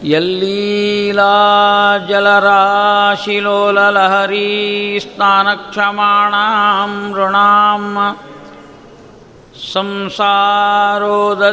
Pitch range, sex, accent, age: 190-210 Hz, male, native, 50-69